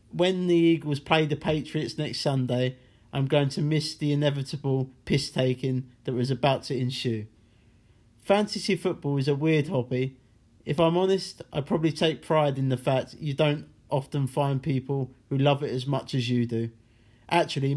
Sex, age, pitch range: male, 40-59, 125-155 Hz